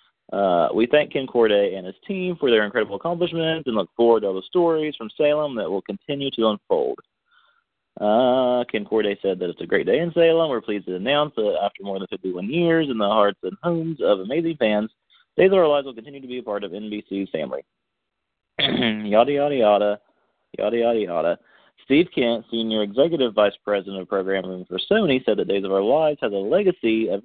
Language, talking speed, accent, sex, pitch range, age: English, 205 wpm, American, male, 100-145 Hz, 30-49